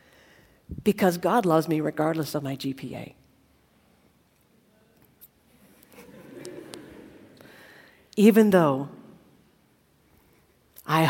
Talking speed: 60 wpm